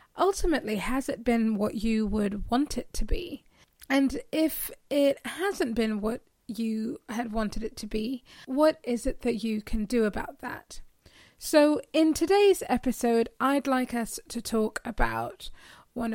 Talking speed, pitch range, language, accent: 160 wpm, 225-270 Hz, English, British